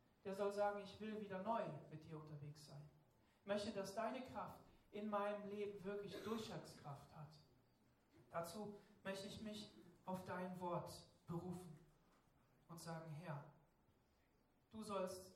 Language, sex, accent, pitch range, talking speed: German, male, German, 155-205 Hz, 135 wpm